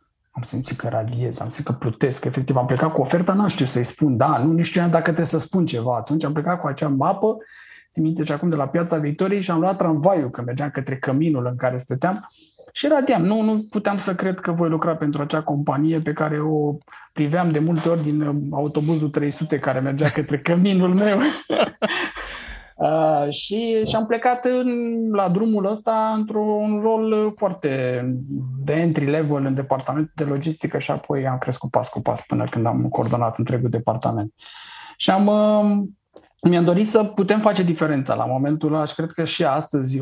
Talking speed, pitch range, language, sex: 185 wpm, 130-195 Hz, Romanian, male